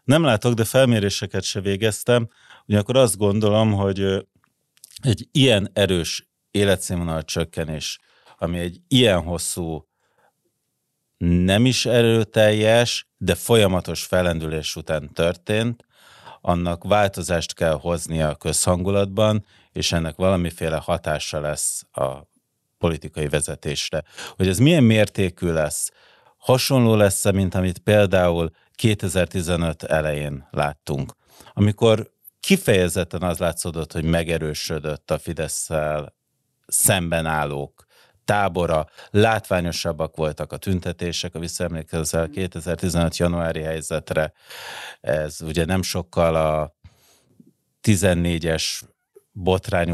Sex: male